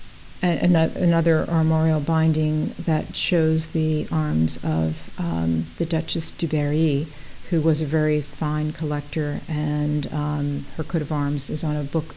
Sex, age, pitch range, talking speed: female, 50-69, 145-165 Hz, 150 wpm